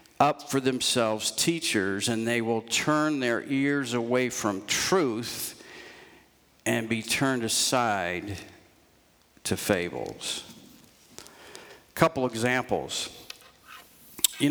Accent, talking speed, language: American, 95 wpm, English